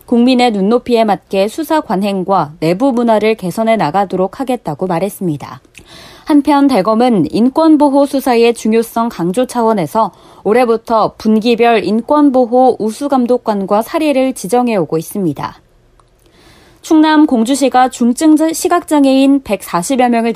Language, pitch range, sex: Korean, 200-270 Hz, female